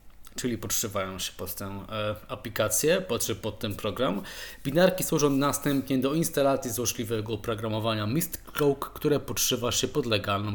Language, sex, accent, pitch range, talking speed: Polish, male, native, 100-130 Hz, 130 wpm